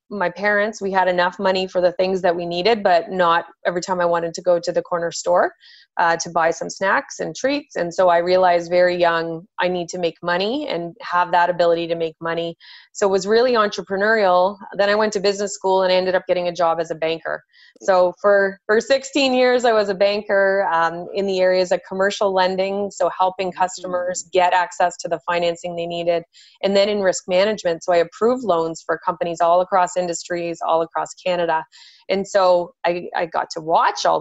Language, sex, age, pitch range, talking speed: English, female, 20-39, 170-195 Hz, 210 wpm